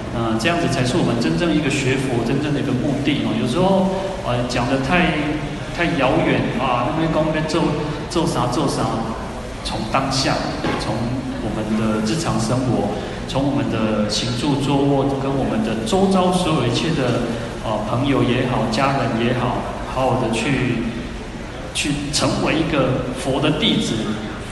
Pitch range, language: 115-145 Hz, Chinese